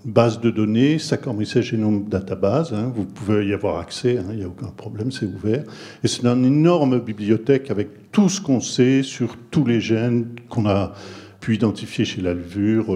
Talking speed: 180 wpm